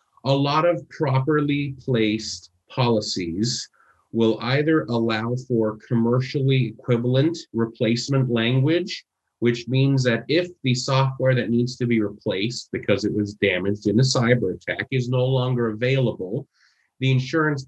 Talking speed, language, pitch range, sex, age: 130 wpm, English, 105-130 Hz, male, 30-49